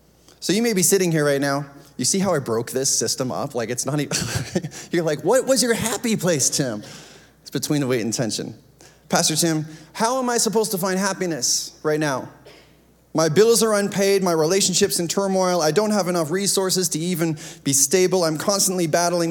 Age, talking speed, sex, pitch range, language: 30-49, 200 wpm, male, 120-180 Hz, English